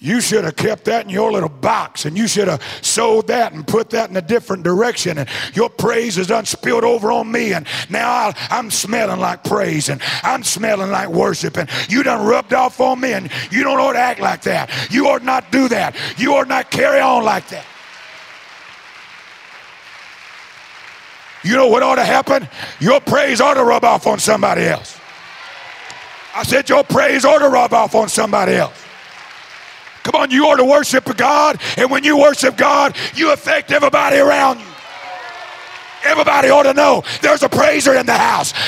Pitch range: 230-295 Hz